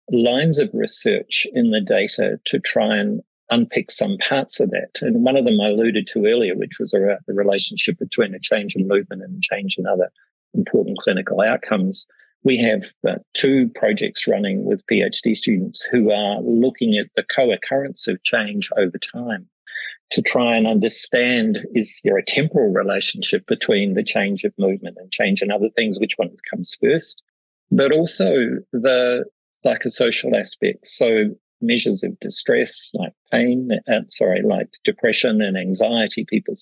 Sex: male